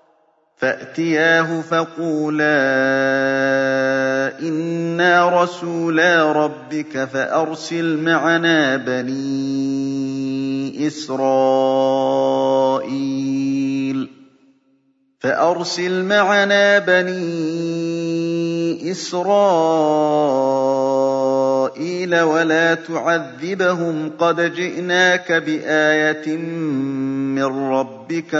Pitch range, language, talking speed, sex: 135-165 Hz, Arabic, 40 wpm, male